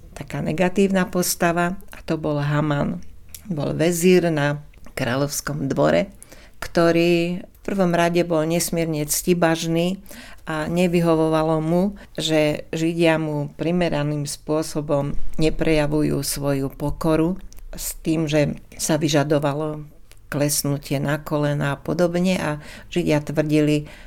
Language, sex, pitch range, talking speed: Slovak, female, 150-175 Hz, 105 wpm